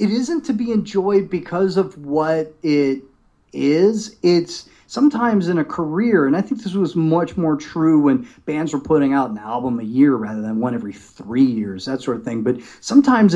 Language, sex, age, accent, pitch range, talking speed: English, male, 40-59, American, 135-205 Hz, 200 wpm